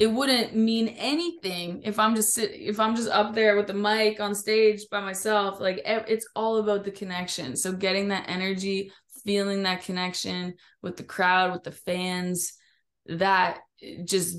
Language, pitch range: English, 180-205 Hz